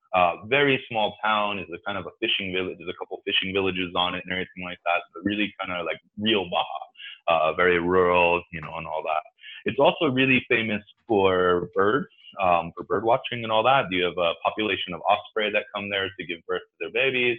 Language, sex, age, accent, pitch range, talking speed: English, male, 20-39, American, 90-120 Hz, 230 wpm